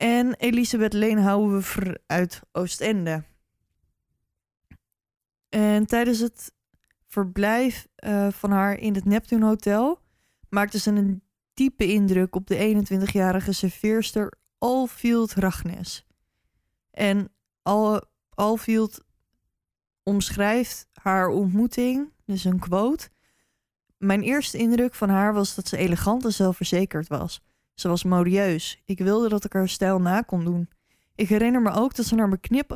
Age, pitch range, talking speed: 20-39, 185-225 Hz, 130 wpm